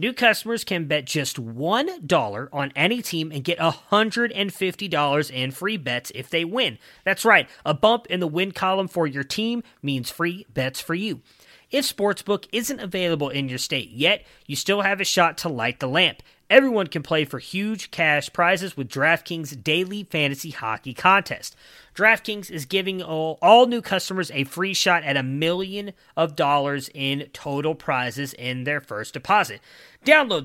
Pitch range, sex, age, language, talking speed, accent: 140-195 Hz, male, 30-49, English, 170 wpm, American